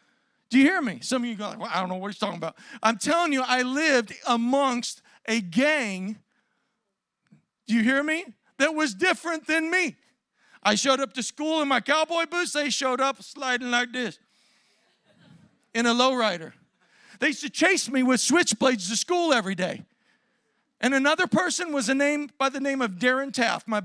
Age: 40-59